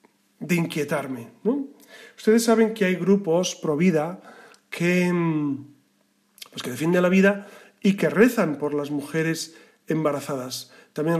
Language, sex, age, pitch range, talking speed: Spanish, male, 40-59, 155-215 Hz, 125 wpm